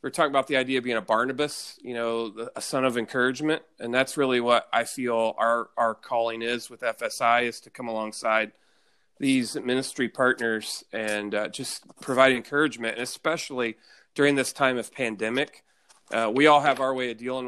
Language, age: English, 30-49